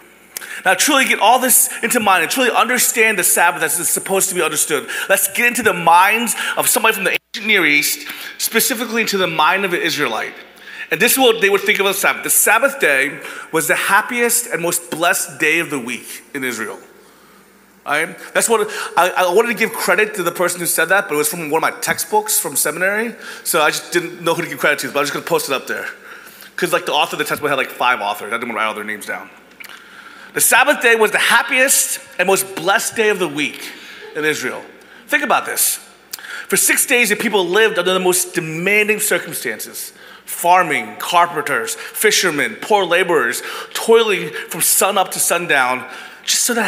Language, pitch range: English, 185-260 Hz